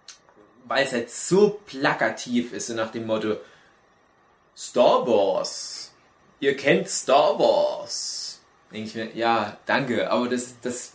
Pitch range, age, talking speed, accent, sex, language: 110-130 Hz, 30-49, 135 wpm, German, male, German